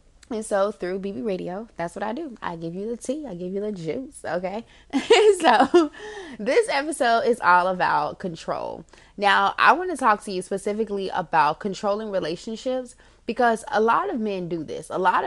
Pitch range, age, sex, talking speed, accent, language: 175-225 Hz, 20-39, female, 180 wpm, American, English